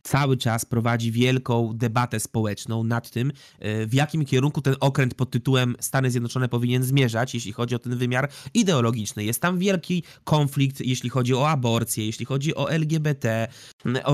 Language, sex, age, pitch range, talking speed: Polish, male, 20-39, 120-150 Hz, 160 wpm